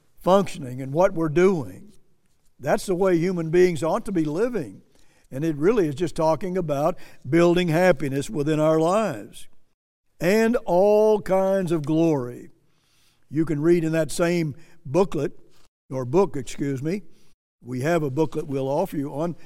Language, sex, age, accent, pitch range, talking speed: English, male, 60-79, American, 150-205 Hz, 155 wpm